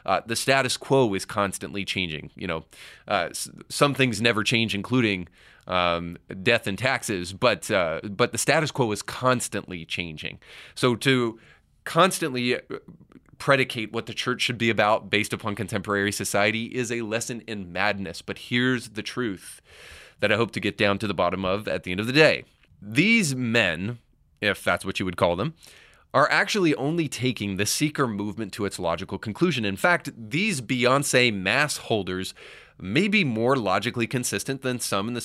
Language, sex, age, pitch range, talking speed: English, male, 30-49, 100-130 Hz, 175 wpm